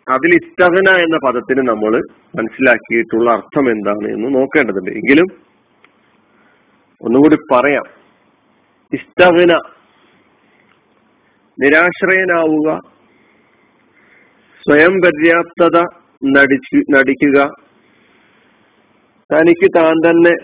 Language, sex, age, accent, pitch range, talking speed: Malayalam, male, 40-59, native, 135-175 Hz, 60 wpm